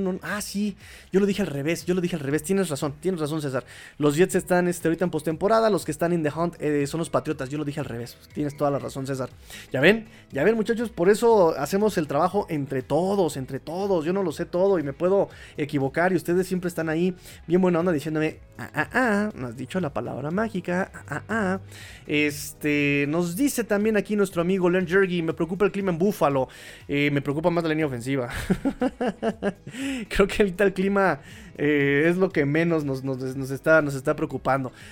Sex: male